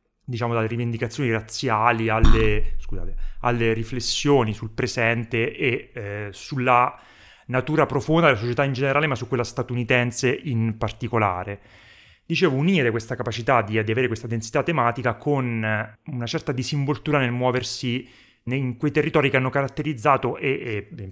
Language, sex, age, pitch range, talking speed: Italian, male, 30-49, 110-135 Hz, 140 wpm